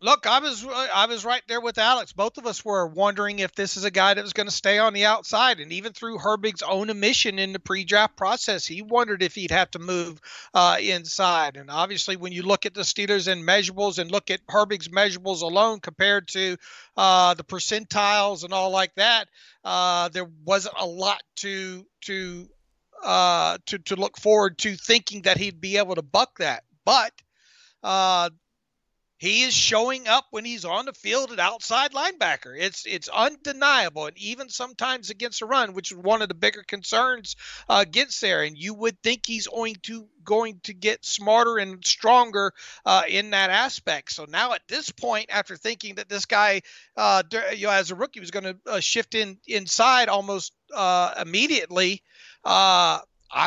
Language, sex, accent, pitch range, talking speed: English, male, American, 190-225 Hz, 190 wpm